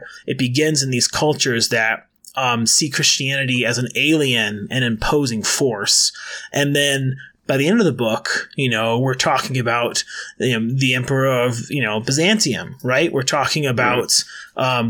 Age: 30-49